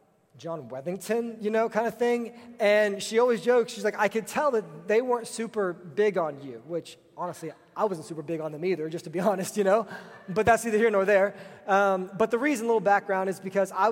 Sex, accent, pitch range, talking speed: male, American, 175-215 Hz, 235 wpm